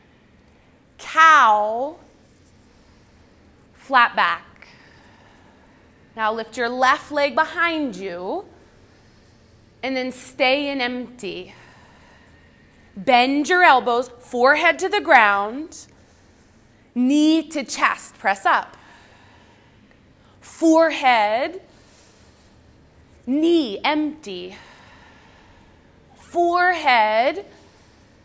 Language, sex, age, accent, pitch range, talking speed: English, female, 30-49, American, 220-305 Hz, 65 wpm